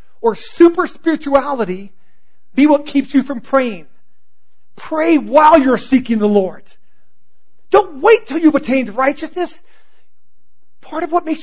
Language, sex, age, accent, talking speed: English, male, 40-59, American, 125 wpm